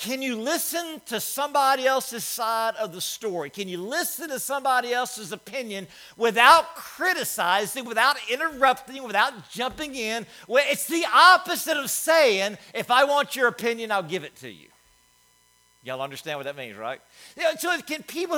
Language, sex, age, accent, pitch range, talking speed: English, male, 50-69, American, 195-280 Hz, 155 wpm